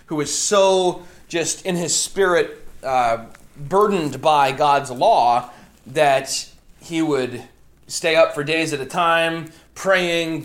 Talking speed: 130 wpm